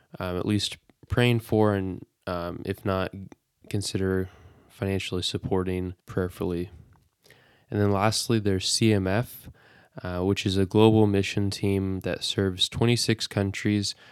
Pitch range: 95-110 Hz